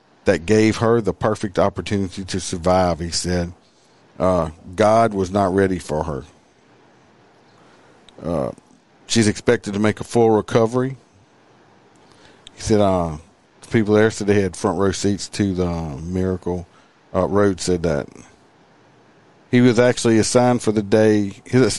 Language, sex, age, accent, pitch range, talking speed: English, male, 50-69, American, 95-115 Hz, 145 wpm